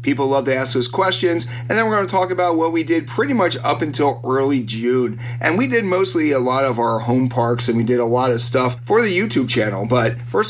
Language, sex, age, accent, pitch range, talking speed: English, male, 30-49, American, 120-150 Hz, 255 wpm